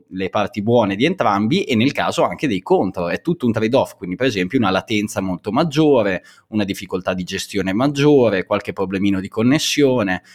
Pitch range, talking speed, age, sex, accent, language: 95-130 Hz, 185 wpm, 20-39, male, native, Italian